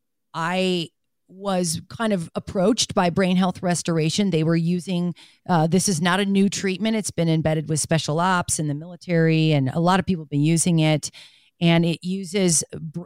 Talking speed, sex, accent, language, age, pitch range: 190 wpm, female, American, English, 40-59, 160-195 Hz